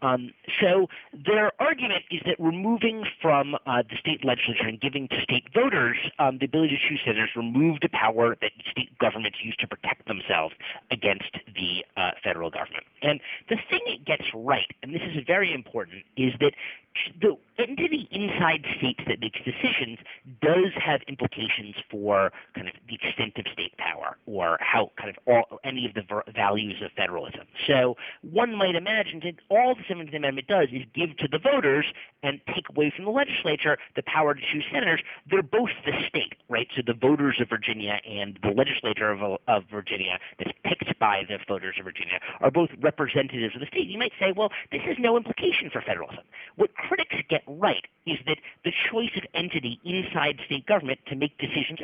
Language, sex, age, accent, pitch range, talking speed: English, male, 40-59, American, 120-185 Hz, 185 wpm